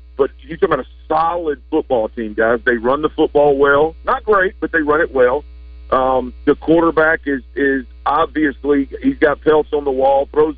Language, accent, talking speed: English, American, 195 wpm